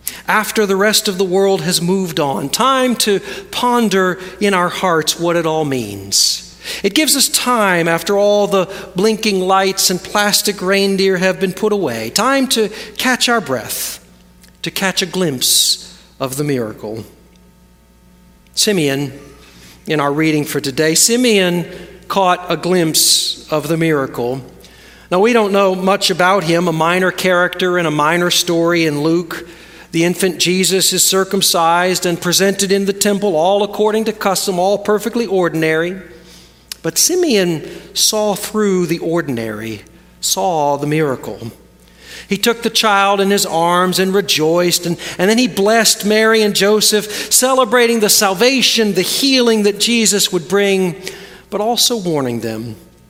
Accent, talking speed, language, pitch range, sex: American, 150 wpm, English, 150-205 Hz, male